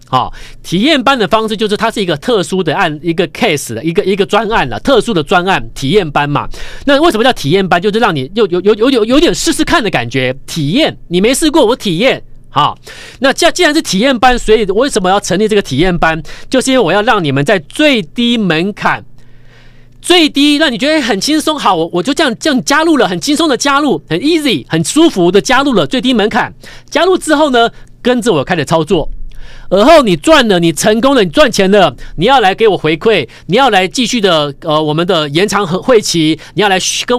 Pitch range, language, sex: 145-235 Hz, Chinese, male